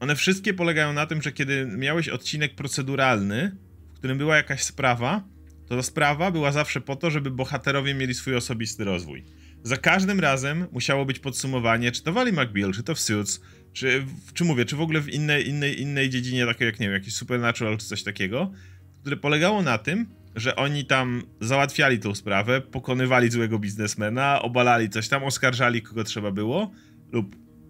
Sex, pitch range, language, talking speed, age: male, 110-150 Hz, Polish, 175 wpm, 30-49